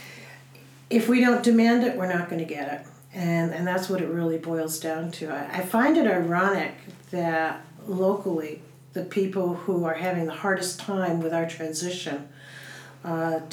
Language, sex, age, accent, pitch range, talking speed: English, female, 50-69, American, 160-205 Hz, 175 wpm